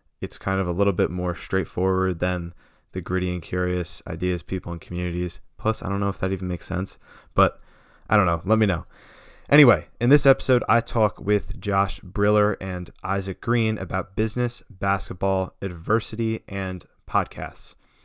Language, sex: English, male